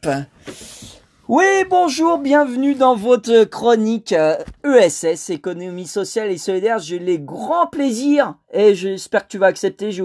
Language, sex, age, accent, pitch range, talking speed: French, male, 30-49, French, 175-220 Hz, 135 wpm